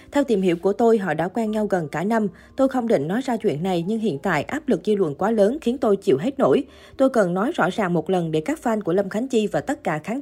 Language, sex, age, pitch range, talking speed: Vietnamese, female, 20-39, 190-235 Hz, 300 wpm